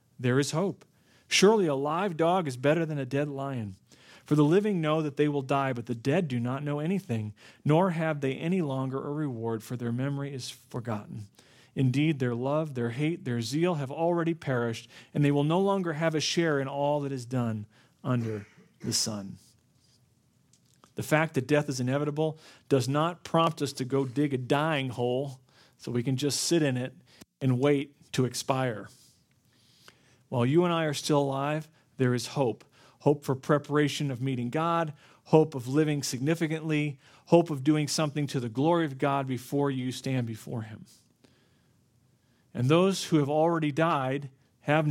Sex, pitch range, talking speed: male, 130-155 Hz, 180 wpm